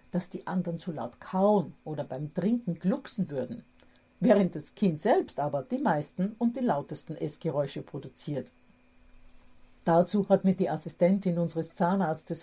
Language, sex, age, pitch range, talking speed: German, female, 50-69, 160-200 Hz, 145 wpm